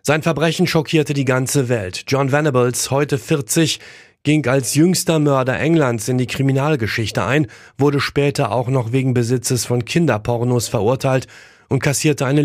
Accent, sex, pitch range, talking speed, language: German, male, 115-140 Hz, 150 wpm, German